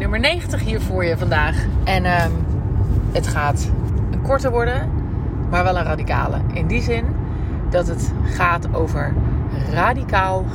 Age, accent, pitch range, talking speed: 30-49, Dutch, 100-125 Hz, 140 wpm